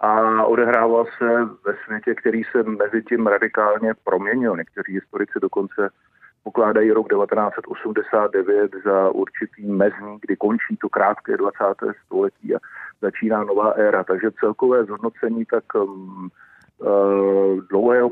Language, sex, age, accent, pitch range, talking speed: Czech, male, 40-59, native, 110-120 Hz, 115 wpm